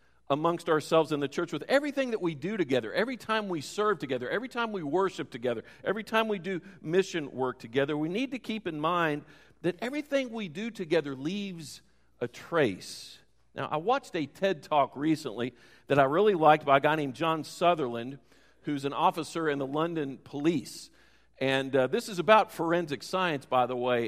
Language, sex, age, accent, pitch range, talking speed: English, male, 50-69, American, 135-185 Hz, 190 wpm